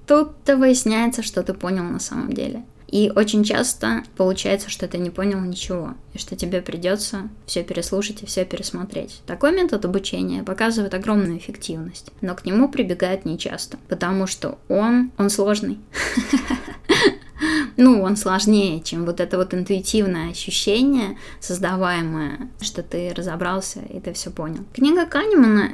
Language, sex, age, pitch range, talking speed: Russian, female, 20-39, 185-220 Hz, 140 wpm